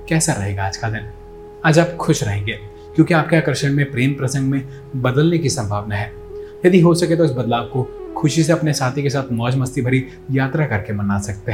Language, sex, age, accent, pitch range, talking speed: Hindi, male, 30-49, native, 115-150 Hz, 210 wpm